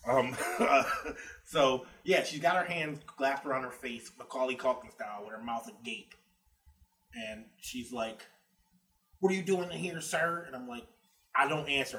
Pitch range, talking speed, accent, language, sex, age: 115-155 Hz, 175 wpm, American, English, male, 20-39